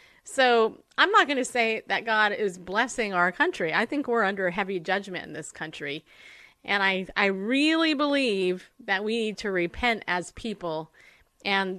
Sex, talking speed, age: female, 175 wpm, 30-49